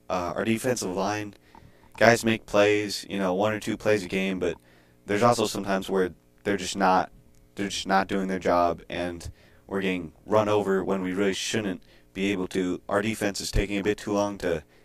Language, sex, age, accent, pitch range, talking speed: English, male, 30-49, American, 90-105 Hz, 200 wpm